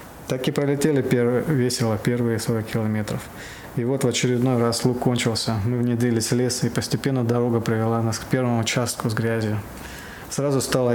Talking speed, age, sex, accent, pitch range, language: 165 wpm, 20-39, male, native, 115-125 Hz, Russian